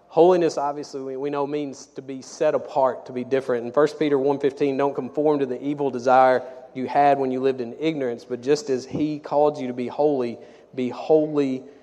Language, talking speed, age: English, 205 wpm, 30-49